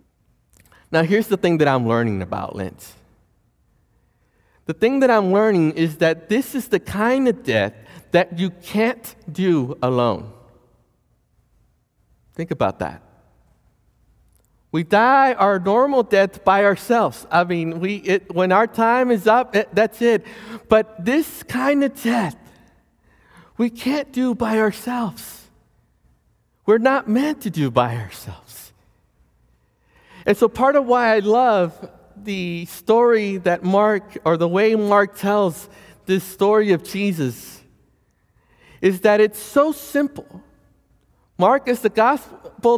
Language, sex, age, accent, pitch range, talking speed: English, male, 50-69, American, 185-240 Hz, 135 wpm